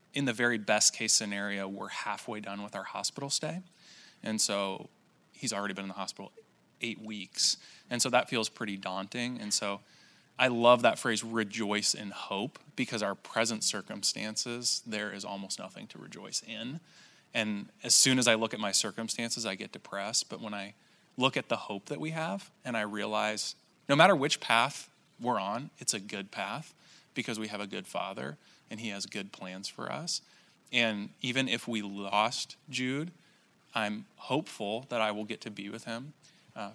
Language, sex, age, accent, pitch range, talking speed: English, male, 20-39, American, 105-140 Hz, 185 wpm